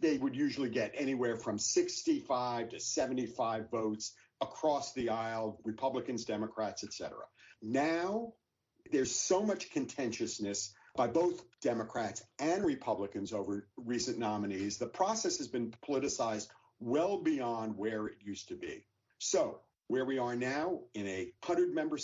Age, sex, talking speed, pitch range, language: 50-69, male, 135 wpm, 110-175 Hz, English